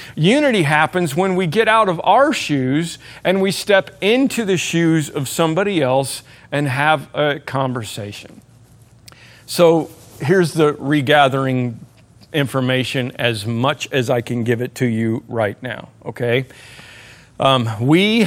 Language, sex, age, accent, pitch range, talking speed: English, male, 50-69, American, 125-150 Hz, 135 wpm